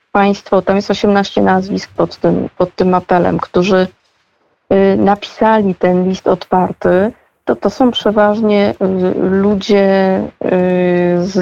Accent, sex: native, female